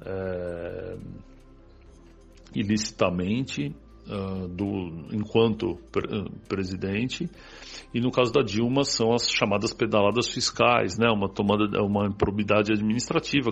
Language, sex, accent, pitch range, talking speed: Portuguese, male, Brazilian, 100-130 Hz, 100 wpm